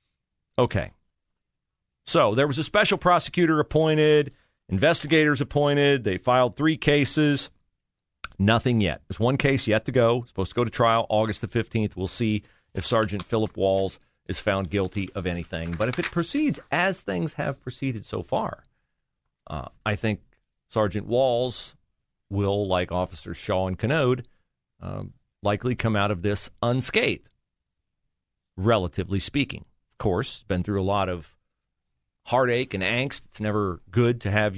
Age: 40-59